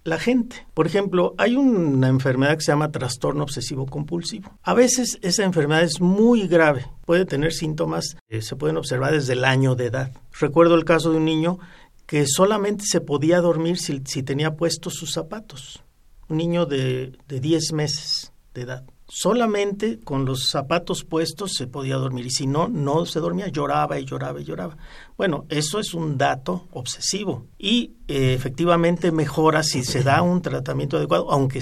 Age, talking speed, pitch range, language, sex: 50-69, 175 wpm, 135-170 Hz, Spanish, male